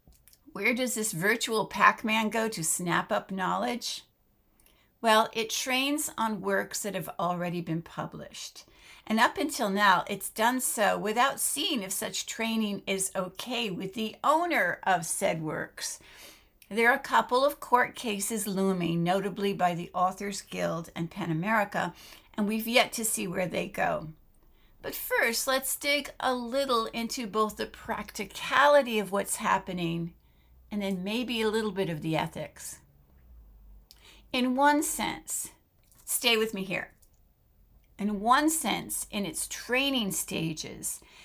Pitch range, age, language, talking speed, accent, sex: 190-245 Hz, 60-79, English, 145 wpm, American, female